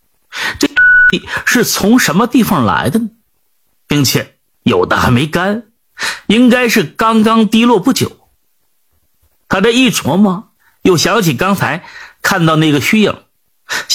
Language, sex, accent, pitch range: Chinese, male, native, 180-240 Hz